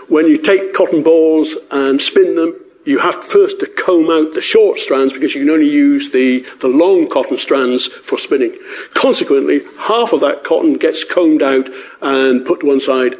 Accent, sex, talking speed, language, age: British, male, 190 wpm, English, 50-69